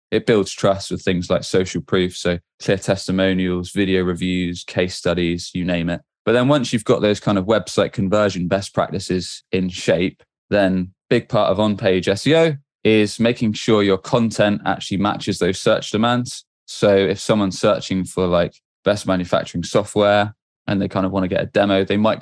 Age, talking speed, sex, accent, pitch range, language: 20-39, 185 wpm, male, British, 95-105 Hz, English